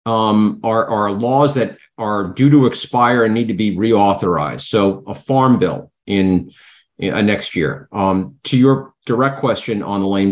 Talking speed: 180 wpm